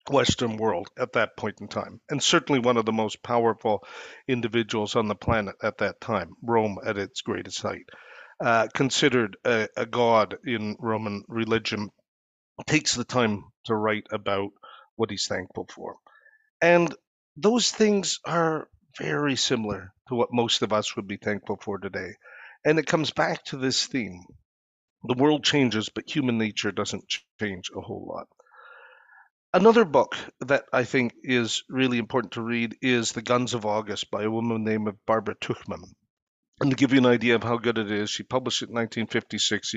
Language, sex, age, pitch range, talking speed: English, male, 50-69, 110-140 Hz, 175 wpm